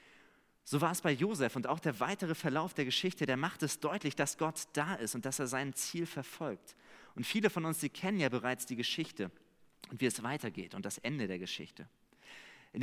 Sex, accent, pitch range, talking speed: male, German, 130-185 Hz, 215 wpm